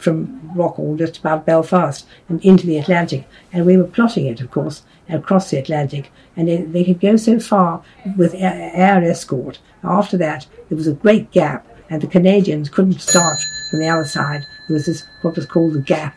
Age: 60-79